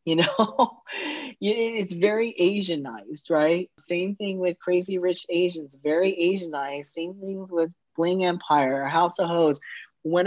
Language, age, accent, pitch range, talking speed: English, 40-59, American, 140-175 Hz, 135 wpm